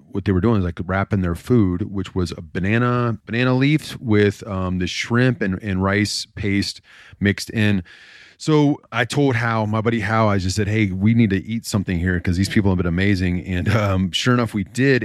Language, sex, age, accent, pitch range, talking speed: English, male, 30-49, American, 95-110 Hz, 215 wpm